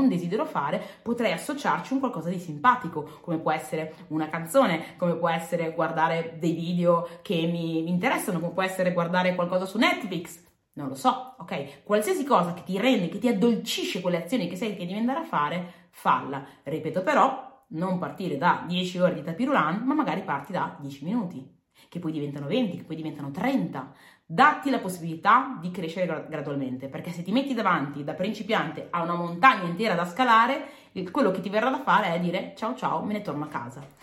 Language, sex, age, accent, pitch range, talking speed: Italian, female, 30-49, native, 165-225 Hz, 190 wpm